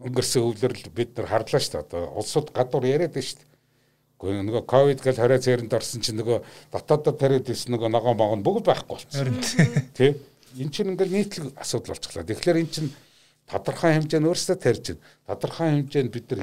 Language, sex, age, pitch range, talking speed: Russian, male, 60-79, 115-150 Hz, 110 wpm